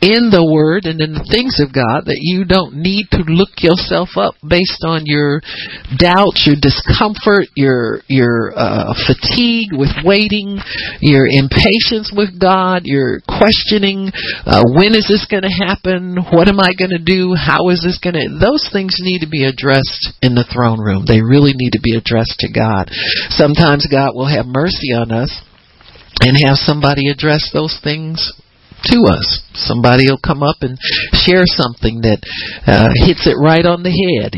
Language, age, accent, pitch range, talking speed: English, 50-69, American, 120-170 Hz, 175 wpm